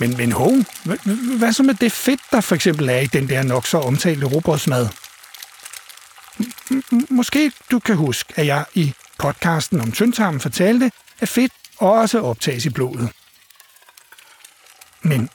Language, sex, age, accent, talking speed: Danish, male, 60-79, native, 155 wpm